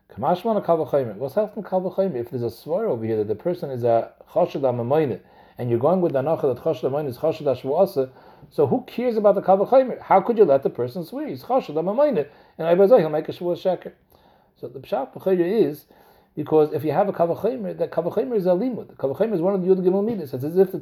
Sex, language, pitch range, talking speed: male, English, 145-210 Hz, 235 wpm